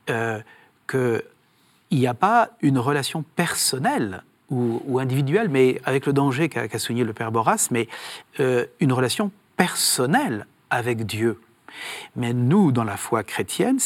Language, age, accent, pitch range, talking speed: French, 40-59, French, 120-160 Hz, 145 wpm